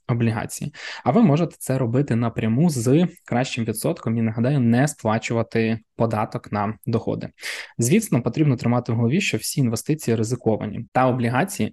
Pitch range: 115-135 Hz